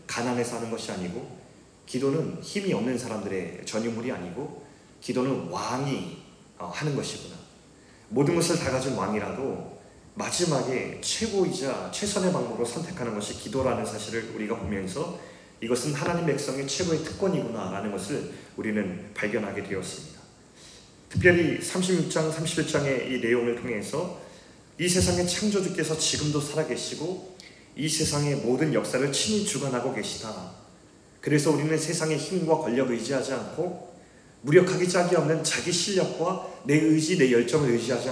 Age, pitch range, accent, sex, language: 30-49, 120-170 Hz, native, male, Korean